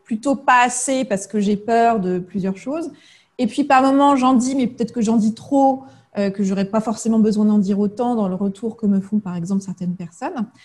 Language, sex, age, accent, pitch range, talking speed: French, female, 30-49, French, 200-275 Hz, 230 wpm